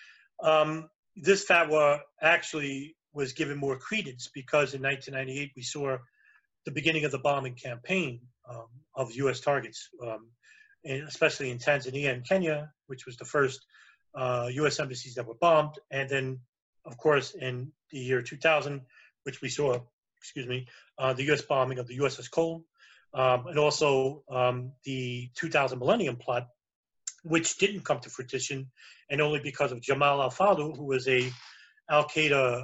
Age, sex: 30-49, male